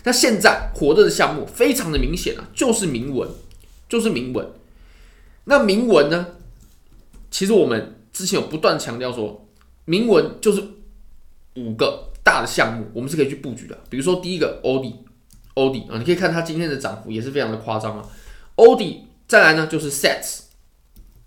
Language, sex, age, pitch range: Chinese, male, 20-39, 115-180 Hz